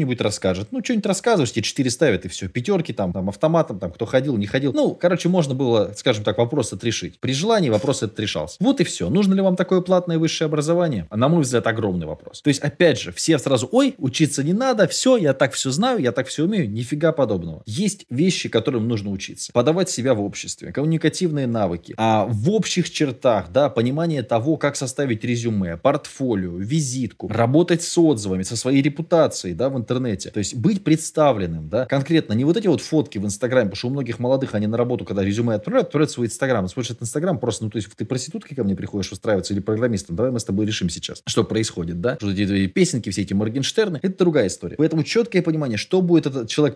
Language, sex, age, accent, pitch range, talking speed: Russian, male, 20-39, native, 110-160 Hz, 215 wpm